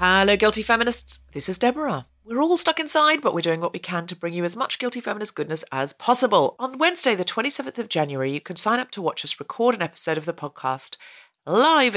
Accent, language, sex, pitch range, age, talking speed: British, English, female, 150-235 Hz, 40-59, 230 wpm